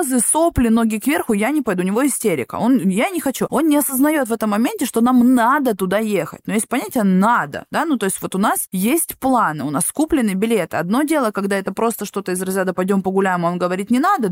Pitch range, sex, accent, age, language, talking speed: 205-260 Hz, female, native, 20-39, Russian, 230 wpm